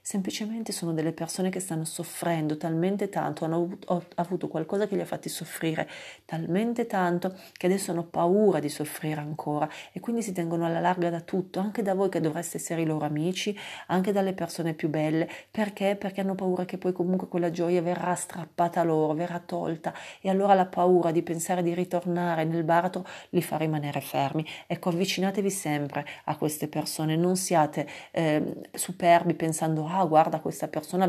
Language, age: Italian, 40-59